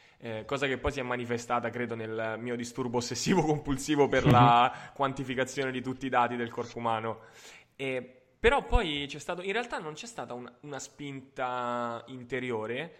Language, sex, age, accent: Italian, male, 20-39, native